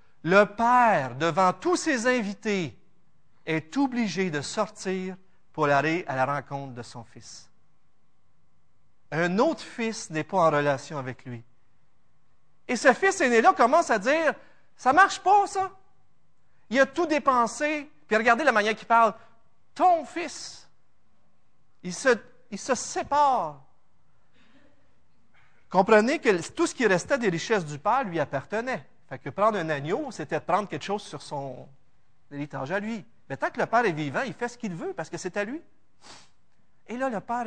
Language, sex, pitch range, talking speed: French, male, 165-260 Hz, 165 wpm